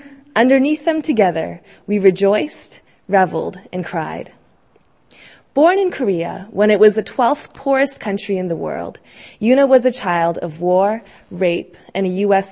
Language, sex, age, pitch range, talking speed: English, female, 20-39, 190-290 Hz, 150 wpm